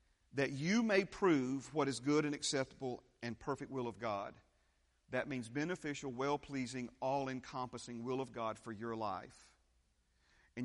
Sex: male